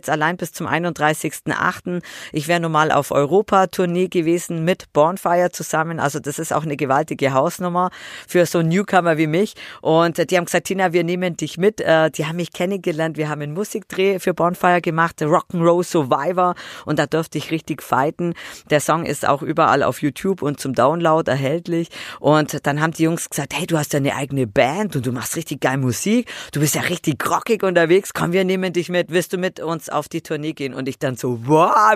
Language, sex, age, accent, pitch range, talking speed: German, female, 40-59, German, 150-180 Hz, 210 wpm